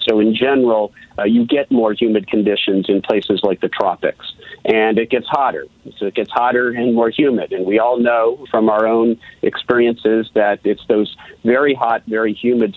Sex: male